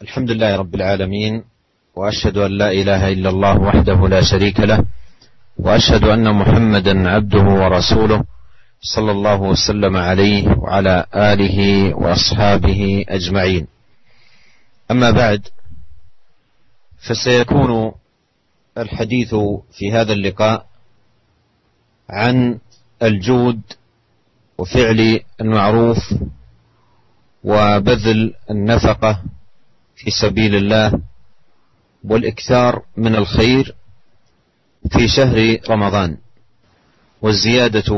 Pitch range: 100-115 Hz